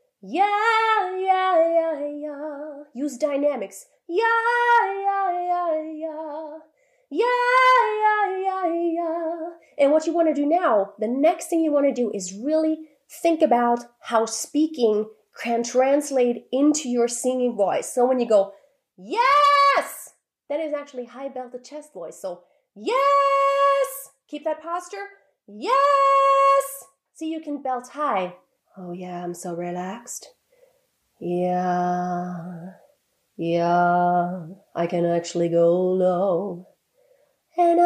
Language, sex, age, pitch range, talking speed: English, female, 30-49, 225-380 Hz, 120 wpm